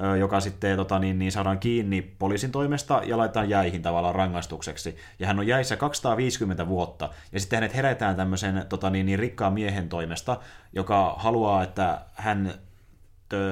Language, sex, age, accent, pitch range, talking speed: Finnish, male, 30-49, native, 95-110 Hz, 160 wpm